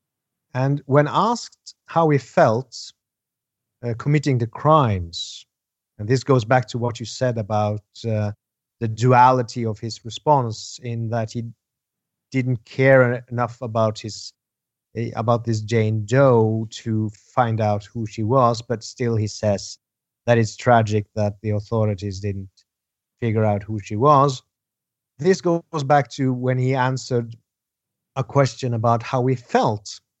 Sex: male